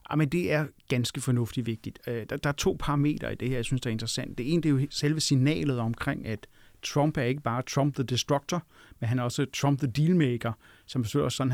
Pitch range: 120-145 Hz